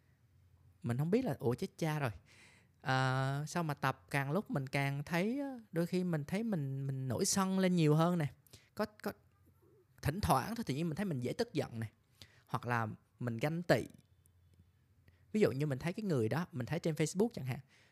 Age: 20-39